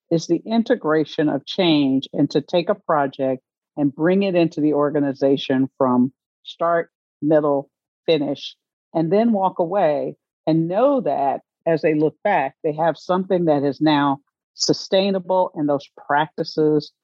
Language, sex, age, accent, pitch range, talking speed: English, female, 50-69, American, 150-185 Hz, 145 wpm